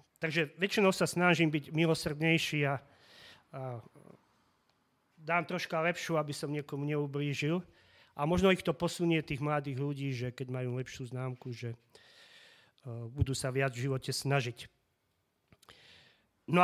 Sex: male